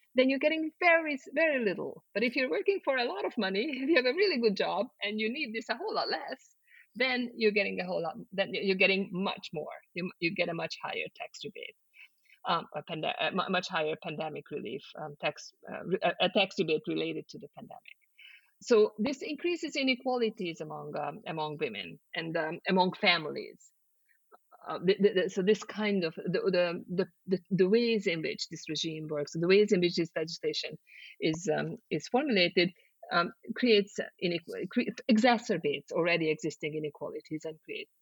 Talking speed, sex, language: 185 wpm, female, English